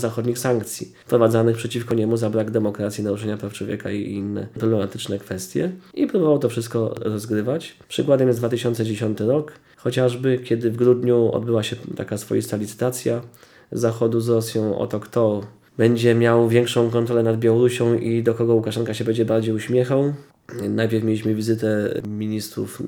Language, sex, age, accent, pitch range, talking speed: Polish, male, 20-39, native, 110-120 Hz, 150 wpm